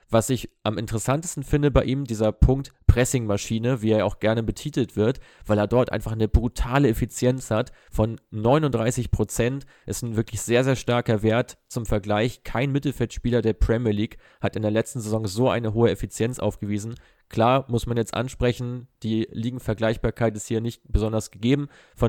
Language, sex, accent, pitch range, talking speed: German, male, German, 110-125 Hz, 170 wpm